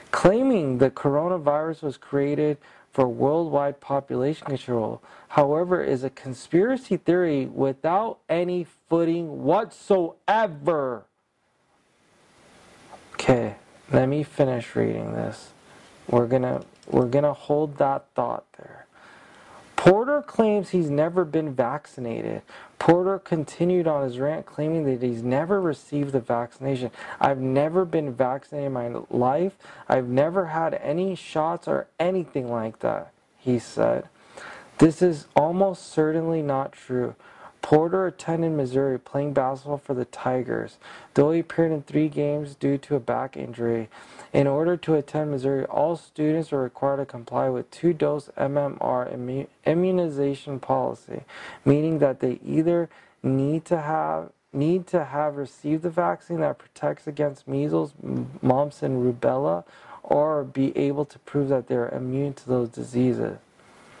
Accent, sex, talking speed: American, male, 130 wpm